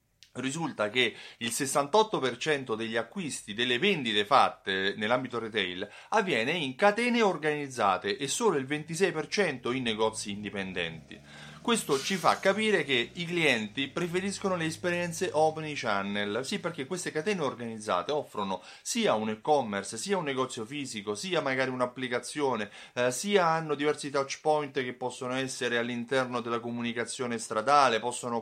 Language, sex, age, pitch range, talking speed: Italian, male, 30-49, 120-165 Hz, 135 wpm